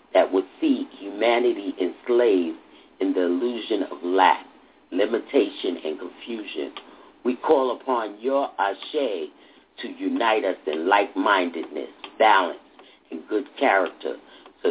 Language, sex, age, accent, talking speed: English, male, 50-69, American, 115 wpm